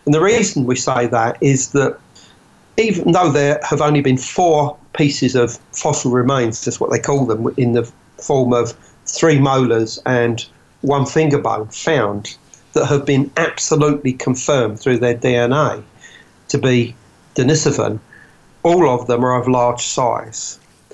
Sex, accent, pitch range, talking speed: male, British, 120-140 Hz, 150 wpm